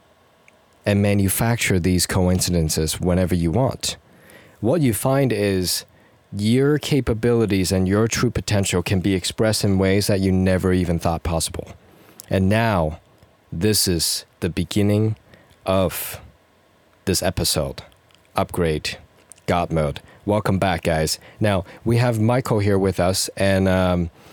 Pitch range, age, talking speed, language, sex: 95-120 Hz, 30-49, 130 wpm, English, male